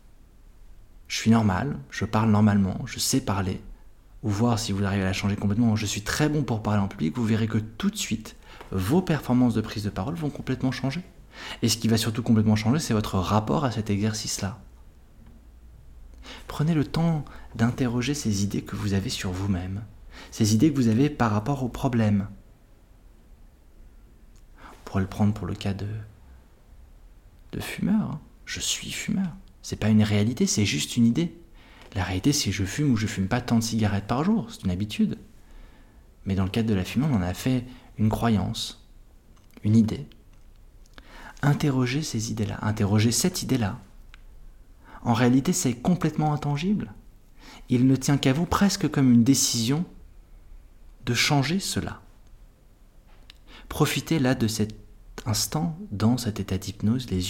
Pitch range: 100-130 Hz